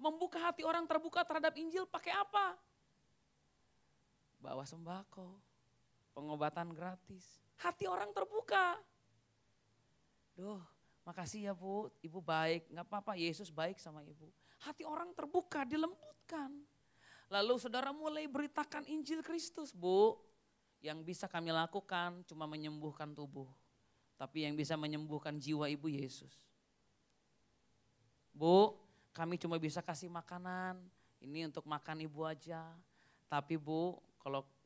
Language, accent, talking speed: Indonesian, native, 115 wpm